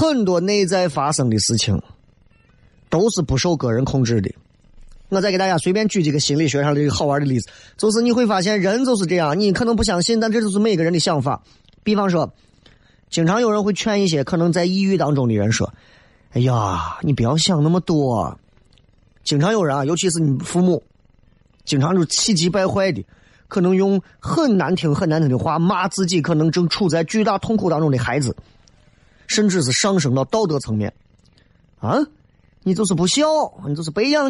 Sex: male